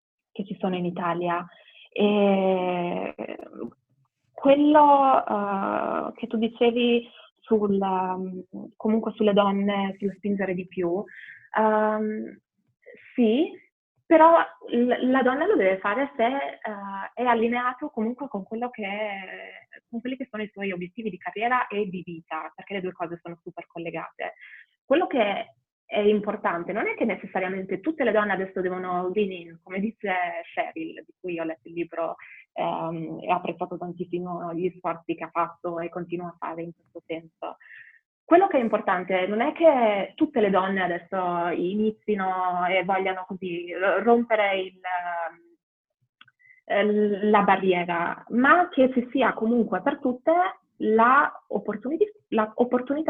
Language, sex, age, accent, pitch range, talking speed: Italian, female, 20-39, native, 180-240 Hz, 145 wpm